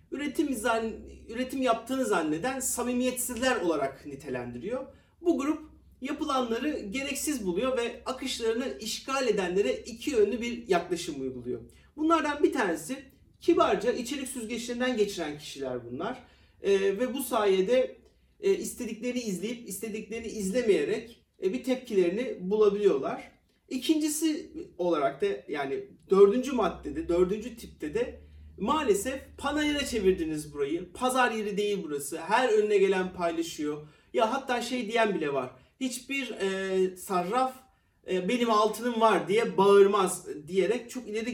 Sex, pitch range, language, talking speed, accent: male, 190-270 Hz, Turkish, 120 wpm, native